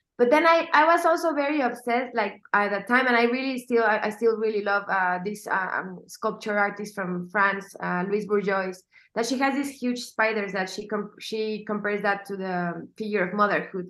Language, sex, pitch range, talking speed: English, female, 195-230 Hz, 205 wpm